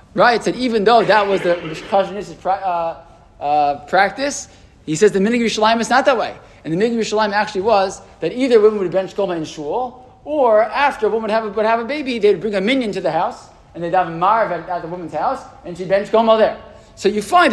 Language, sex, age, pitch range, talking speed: English, male, 20-39, 160-215 Hz, 235 wpm